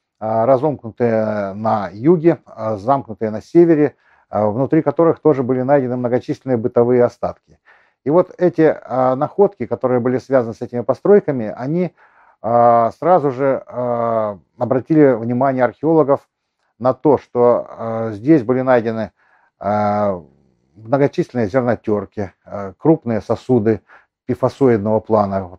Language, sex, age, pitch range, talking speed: Russian, male, 50-69, 110-145 Hz, 100 wpm